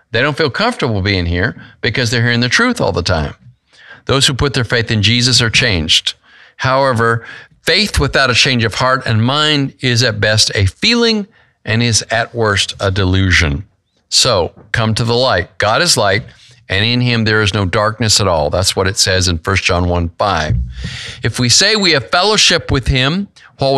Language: English